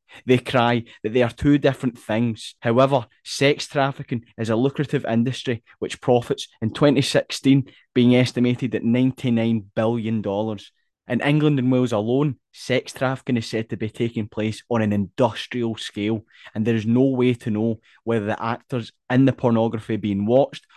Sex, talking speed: male, 160 wpm